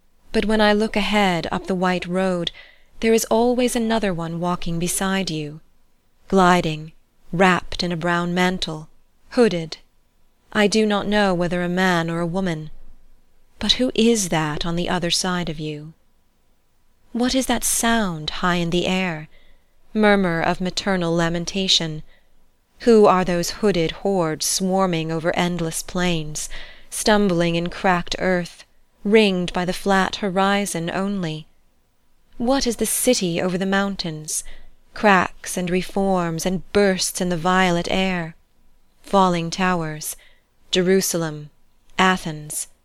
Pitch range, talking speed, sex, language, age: 165-195 Hz, 135 wpm, female, English, 30-49